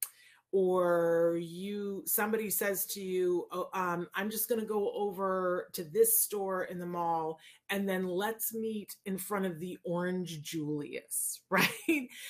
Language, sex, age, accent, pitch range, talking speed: English, female, 30-49, American, 180-245 Hz, 150 wpm